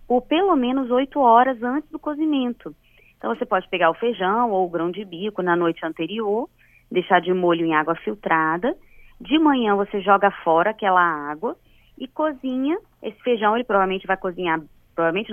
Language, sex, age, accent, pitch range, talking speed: Portuguese, female, 20-39, Brazilian, 175-260 Hz, 170 wpm